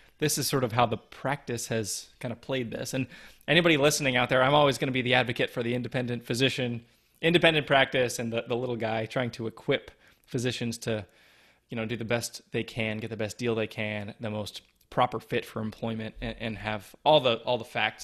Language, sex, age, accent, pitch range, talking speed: English, male, 20-39, American, 115-140 Hz, 225 wpm